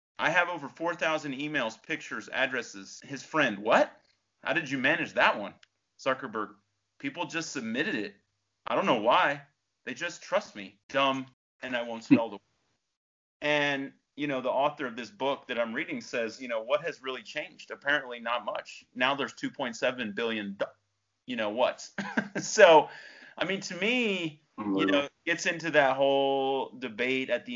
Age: 30-49